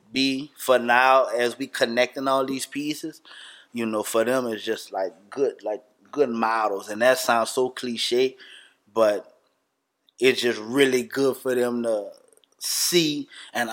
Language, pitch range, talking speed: English, 115-140 Hz, 155 wpm